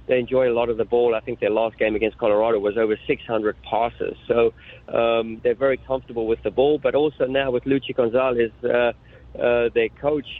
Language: English